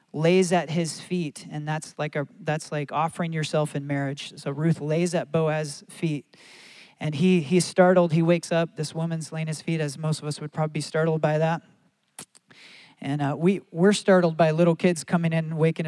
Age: 40-59